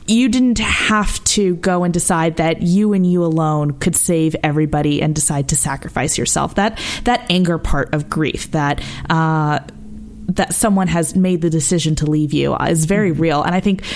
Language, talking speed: English, 185 wpm